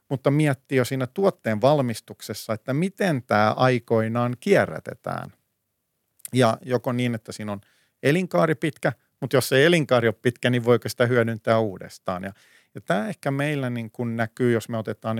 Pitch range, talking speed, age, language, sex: 105-135 Hz, 160 wpm, 50-69, Finnish, male